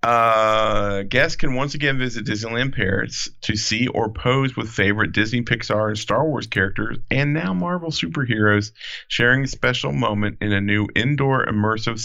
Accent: American